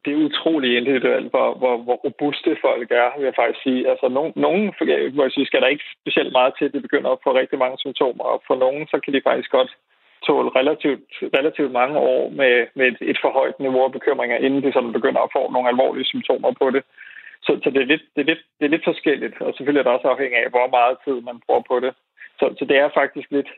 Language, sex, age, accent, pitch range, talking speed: Danish, male, 20-39, native, 125-155 Hz, 235 wpm